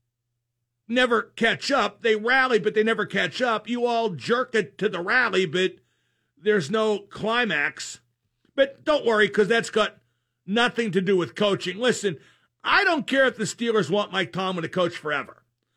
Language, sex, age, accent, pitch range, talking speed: English, male, 50-69, American, 165-215 Hz, 170 wpm